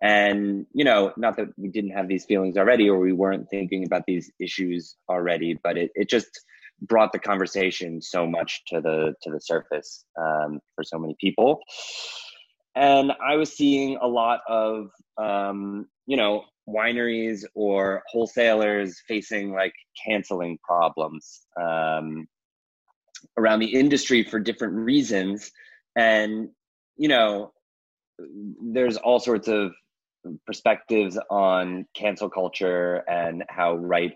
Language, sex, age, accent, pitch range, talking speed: English, male, 30-49, American, 85-110 Hz, 135 wpm